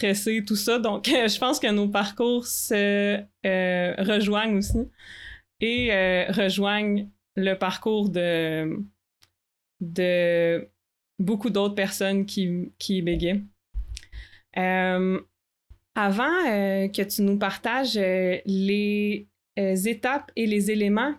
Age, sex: 20-39, female